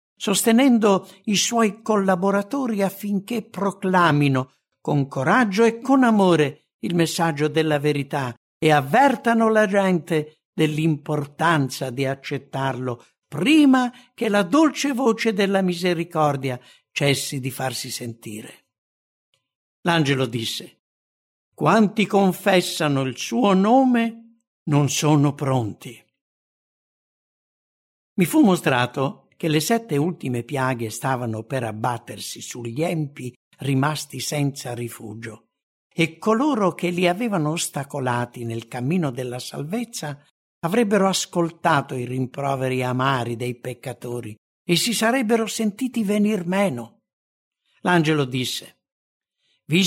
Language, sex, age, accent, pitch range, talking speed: English, male, 60-79, Italian, 135-215 Hz, 100 wpm